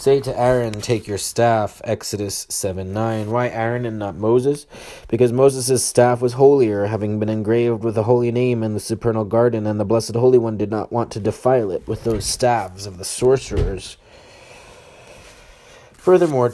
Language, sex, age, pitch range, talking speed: English, male, 20-39, 105-125 Hz, 175 wpm